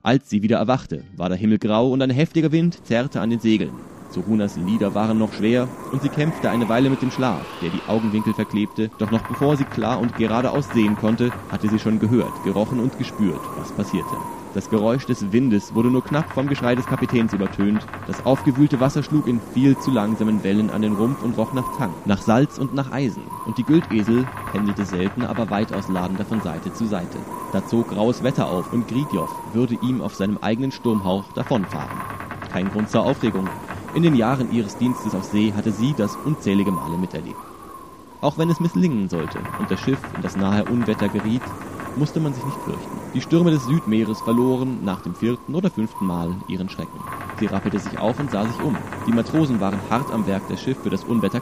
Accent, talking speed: German, 205 wpm